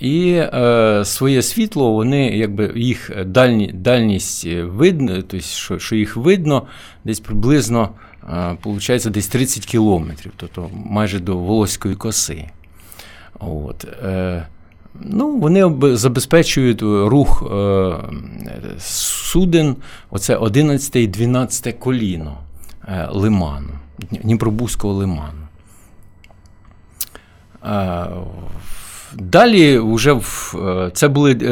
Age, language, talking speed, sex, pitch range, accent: 50-69, Ukrainian, 95 wpm, male, 95-125 Hz, native